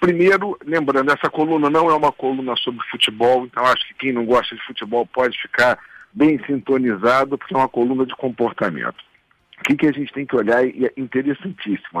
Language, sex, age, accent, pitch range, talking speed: Portuguese, male, 50-69, Brazilian, 120-160 Hz, 190 wpm